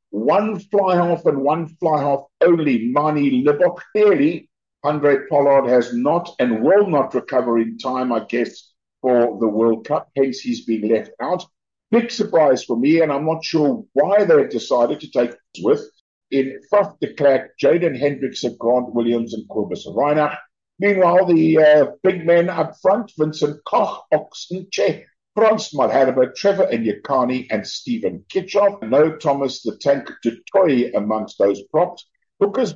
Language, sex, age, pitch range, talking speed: English, male, 50-69, 130-190 Hz, 155 wpm